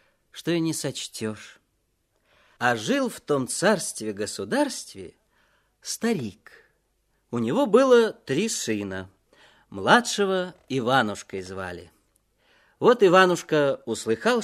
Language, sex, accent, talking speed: Russian, male, native, 85 wpm